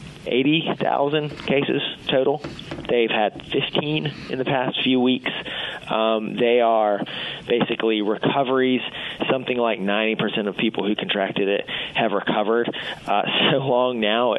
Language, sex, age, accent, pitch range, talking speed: English, male, 30-49, American, 110-140 Hz, 125 wpm